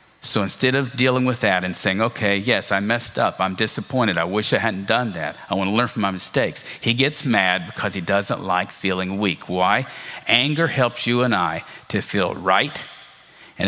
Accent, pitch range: American, 95-135 Hz